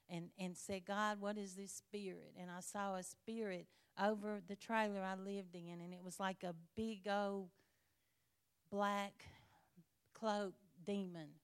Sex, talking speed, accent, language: female, 150 wpm, American, English